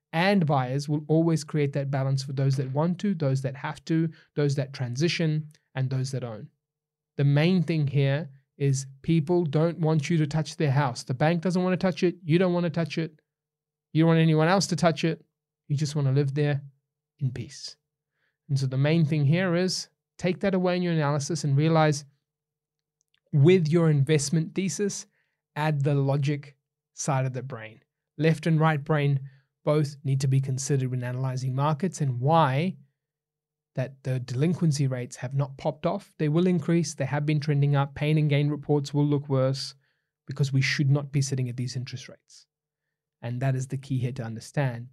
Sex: male